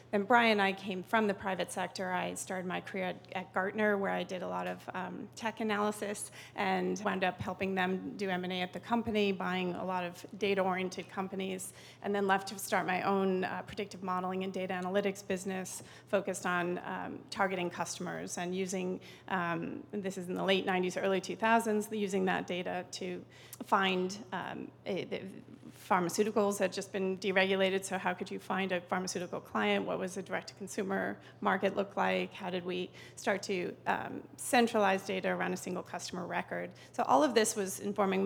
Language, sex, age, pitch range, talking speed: English, female, 30-49, 185-205 Hz, 185 wpm